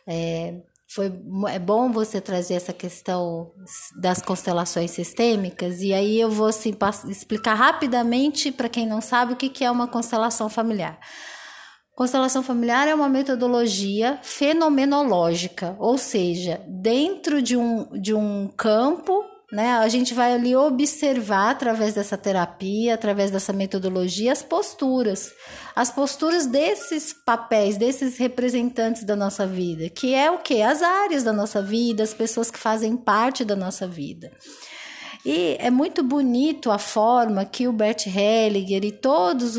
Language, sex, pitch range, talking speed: Portuguese, female, 200-265 Hz, 140 wpm